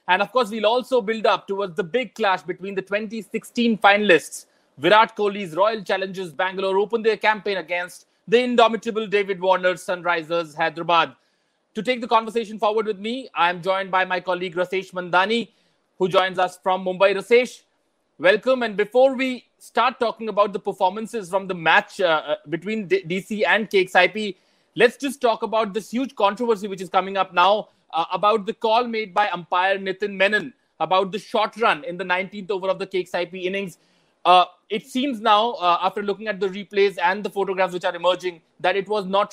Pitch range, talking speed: 185-220 Hz, 185 wpm